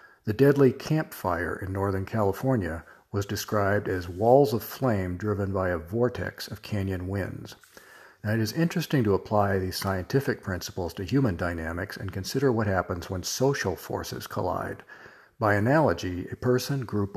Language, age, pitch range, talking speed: English, 50-69, 95-125 Hz, 150 wpm